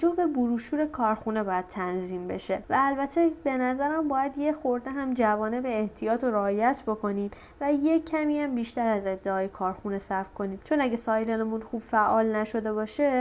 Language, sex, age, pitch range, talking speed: Persian, female, 30-49, 215-290 Hz, 170 wpm